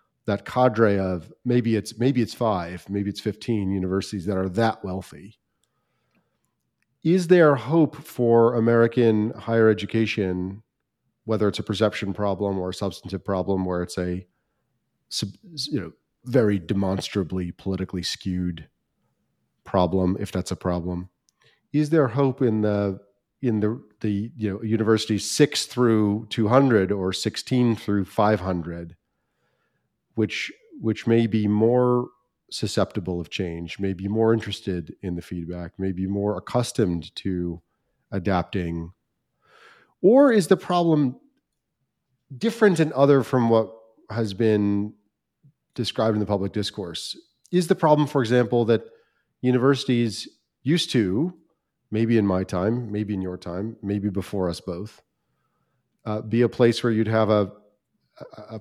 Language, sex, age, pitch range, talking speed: English, male, 40-59, 95-120 Hz, 135 wpm